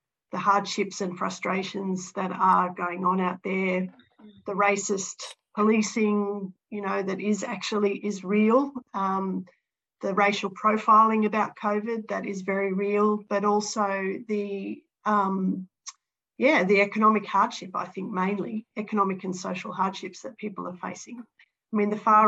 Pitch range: 185-210 Hz